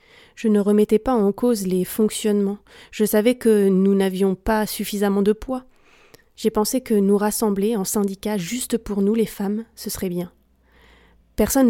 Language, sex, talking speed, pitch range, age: French, female, 170 wpm, 200-230 Hz, 20-39